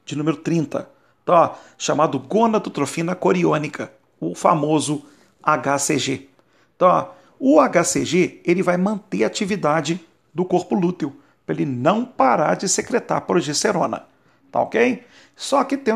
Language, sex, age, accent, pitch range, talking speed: Portuguese, male, 40-59, Brazilian, 150-210 Hz, 105 wpm